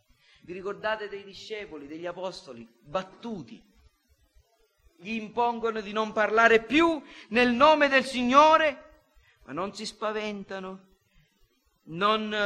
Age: 40-59